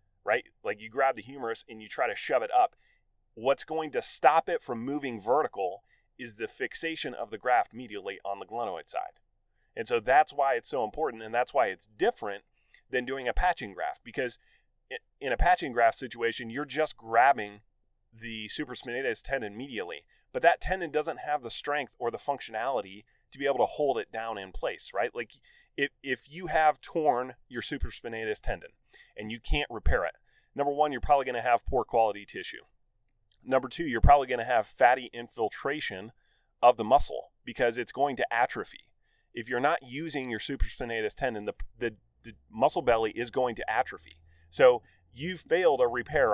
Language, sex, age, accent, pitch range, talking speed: English, male, 30-49, American, 110-150 Hz, 185 wpm